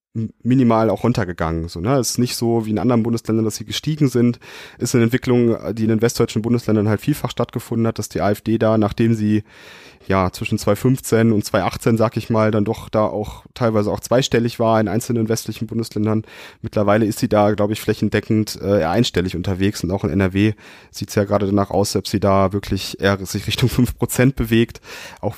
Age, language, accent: 30-49, German, German